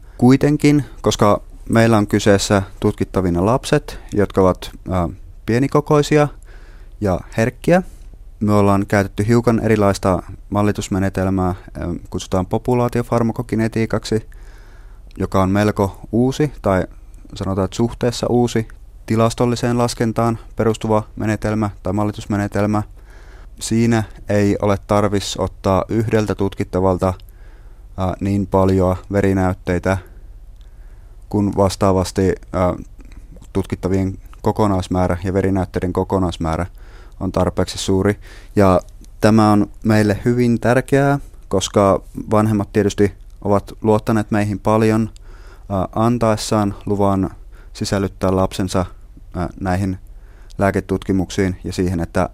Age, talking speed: 30-49, 85 wpm